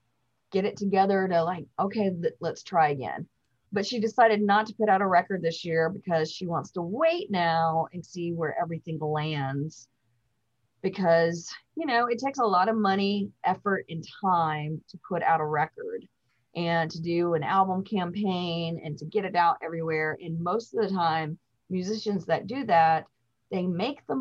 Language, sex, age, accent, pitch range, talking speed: English, female, 30-49, American, 165-210 Hz, 180 wpm